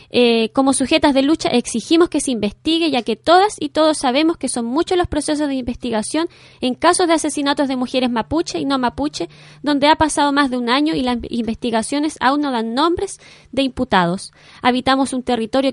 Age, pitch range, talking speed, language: 20-39, 240-310 Hz, 195 wpm, Spanish